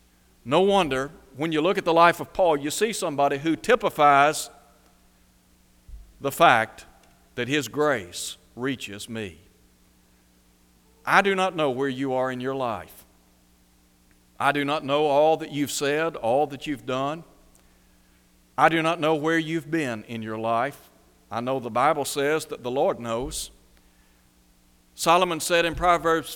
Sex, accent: male, American